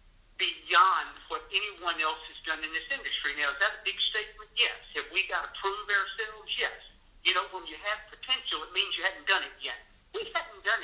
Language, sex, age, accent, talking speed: English, male, 60-79, American, 215 wpm